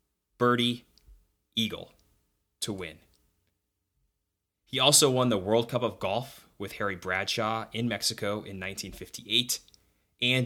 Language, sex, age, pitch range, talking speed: English, male, 20-39, 95-125 Hz, 115 wpm